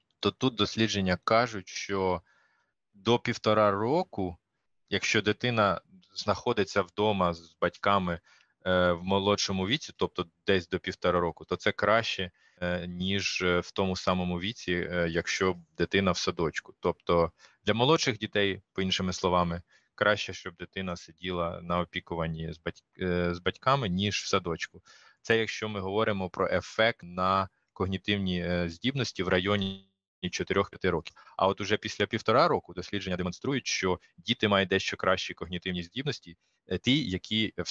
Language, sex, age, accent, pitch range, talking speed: Ukrainian, male, 20-39, native, 90-105 Hz, 130 wpm